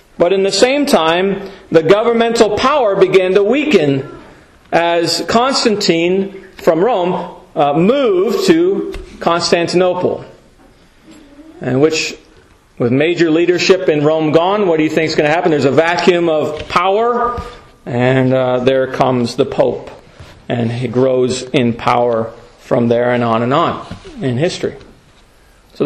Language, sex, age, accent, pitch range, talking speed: English, male, 40-59, American, 140-205 Hz, 140 wpm